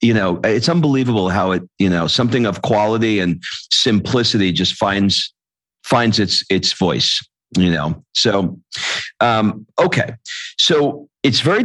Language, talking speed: English, 140 wpm